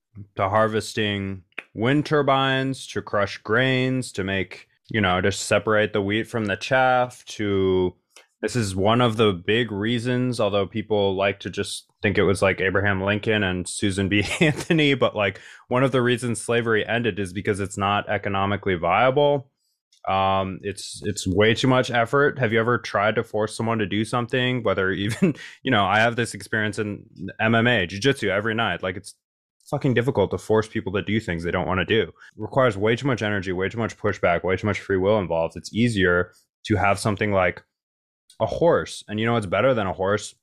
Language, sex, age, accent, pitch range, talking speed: English, male, 20-39, American, 100-125 Hz, 195 wpm